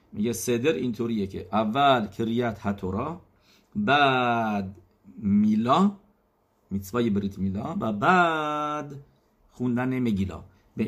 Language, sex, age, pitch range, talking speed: English, male, 50-69, 105-135 Hz, 95 wpm